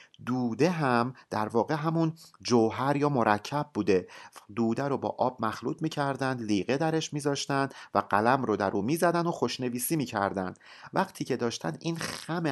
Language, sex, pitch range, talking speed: Persian, male, 110-155 Hz, 170 wpm